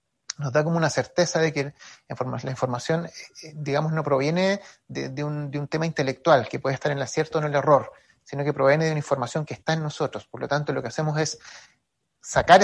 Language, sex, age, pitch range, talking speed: Spanish, male, 30-49, 135-165 Hz, 215 wpm